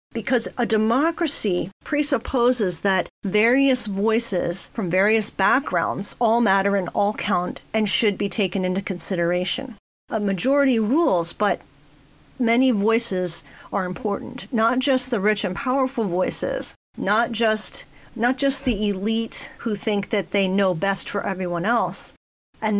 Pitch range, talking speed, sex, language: 195-240 Hz, 135 wpm, female, English